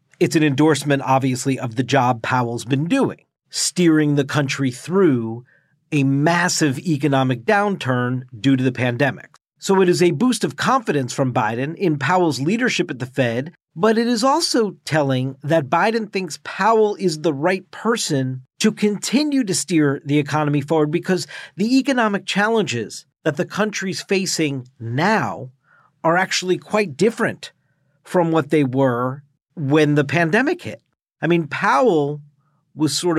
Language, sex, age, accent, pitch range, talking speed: English, male, 40-59, American, 140-185 Hz, 150 wpm